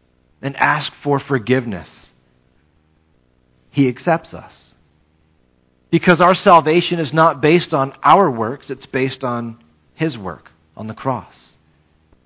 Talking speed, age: 115 wpm, 40-59